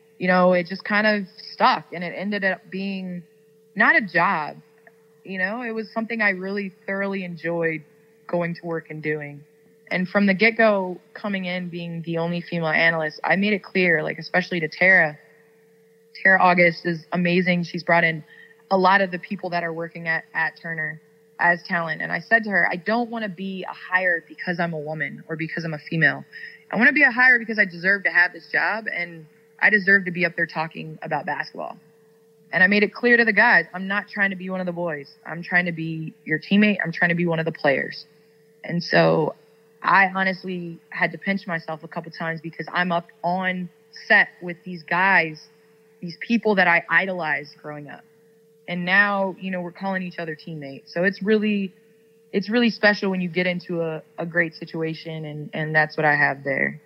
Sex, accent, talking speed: female, American, 210 wpm